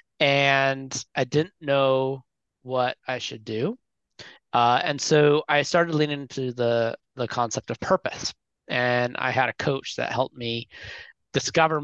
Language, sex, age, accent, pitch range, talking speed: English, male, 30-49, American, 120-150 Hz, 145 wpm